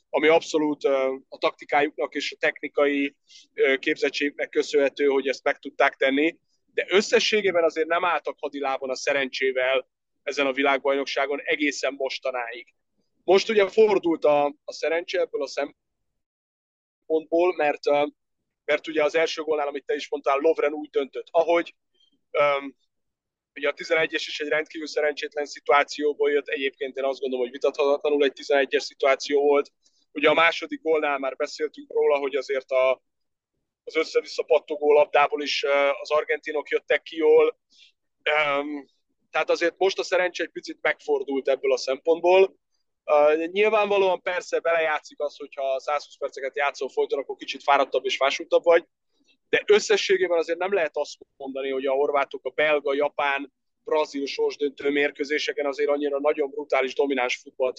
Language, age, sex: Hungarian, 30-49, male